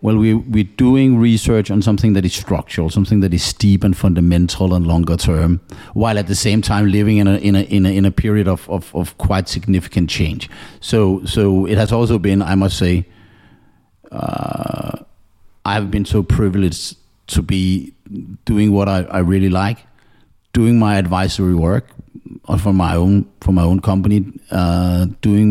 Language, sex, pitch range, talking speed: Danish, male, 95-110 Hz, 180 wpm